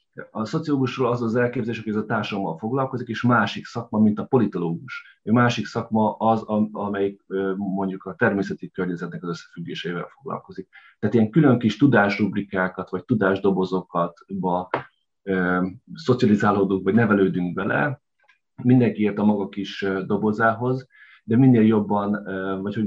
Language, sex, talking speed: Hungarian, male, 130 wpm